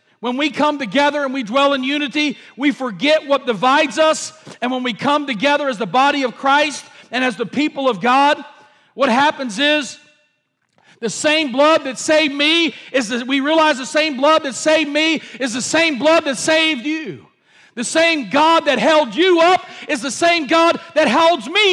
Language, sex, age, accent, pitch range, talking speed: English, male, 50-69, American, 225-295 Hz, 195 wpm